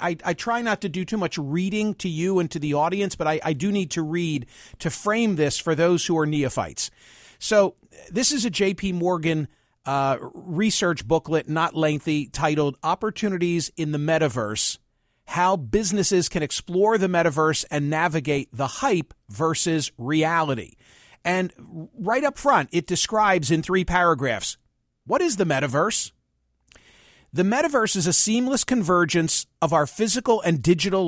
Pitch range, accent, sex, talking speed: 155-195 Hz, American, male, 160 wpm